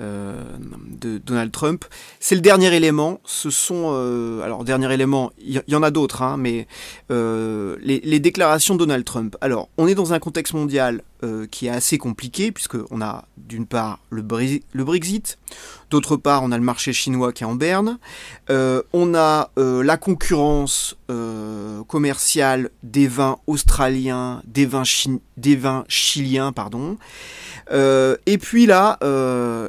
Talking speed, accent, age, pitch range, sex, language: 170 wpm, French, 30-49, 120-155 Hz, male, French